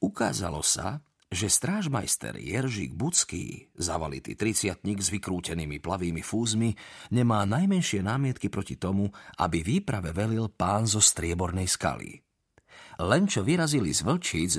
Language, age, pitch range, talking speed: Slovak, 40-59, 95-135 Hz, 120 wpm